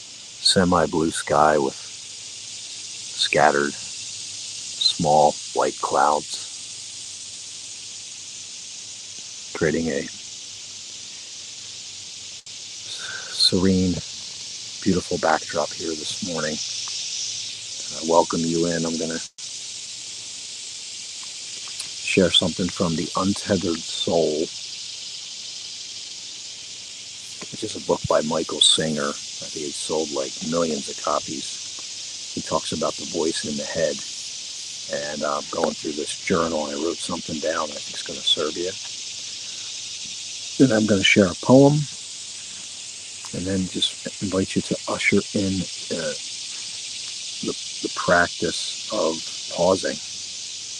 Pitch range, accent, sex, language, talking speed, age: 95-110 Hz, American, male, English, 105 wpm, 50-69